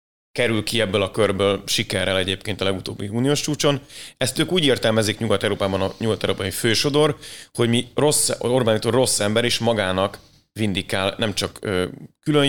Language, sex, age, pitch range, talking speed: Hungarian, male, 30-49, 100-115 Hz, 145 wpm